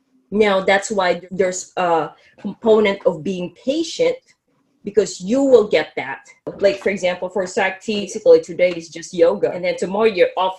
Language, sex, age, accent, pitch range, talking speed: English, female, 20-39, Filipino, 180-265 Hz, 165 wpm